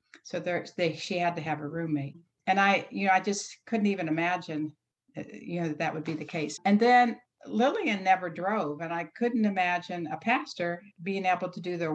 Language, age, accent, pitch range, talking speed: English, 60-79, American, 170-200 Hz, 210 wpm